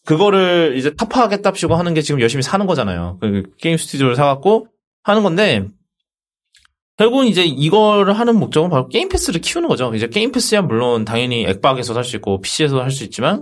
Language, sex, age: Korean, male, 20-39